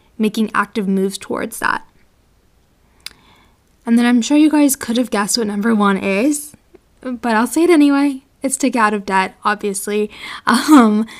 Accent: American